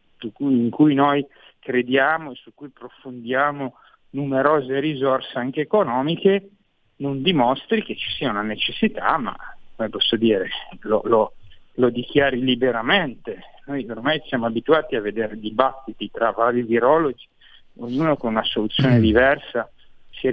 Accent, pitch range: native, 120-140 Hz